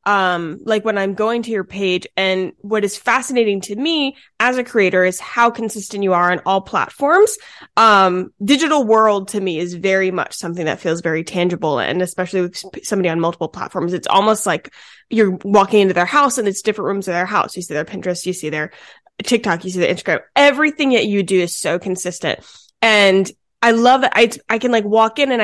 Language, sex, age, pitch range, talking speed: English, female, 20-39, 185-225 Hz, 210 wpm